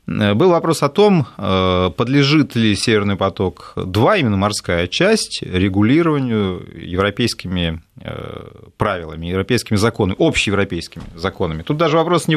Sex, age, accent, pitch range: male, 30-49, native, 100-155 Hz